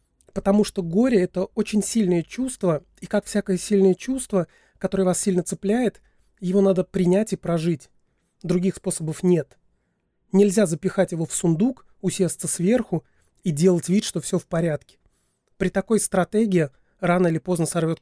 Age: 30-49